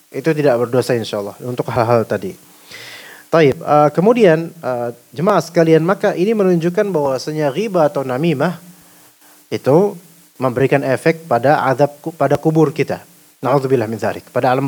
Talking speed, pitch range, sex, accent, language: 135 wpm, 125-180 Hz, male, native, Indonesian